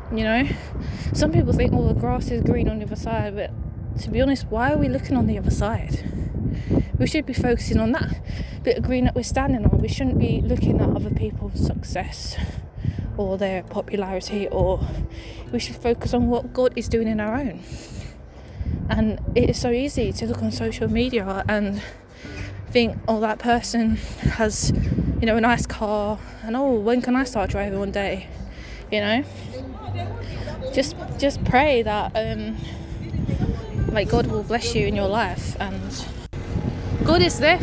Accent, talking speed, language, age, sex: British, 180 wpm, English, 20-39, female